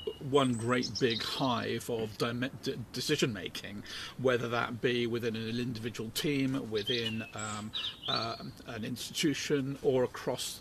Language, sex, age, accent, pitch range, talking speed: English, male, 50-69, British, 120-140 Hz, 120 wpm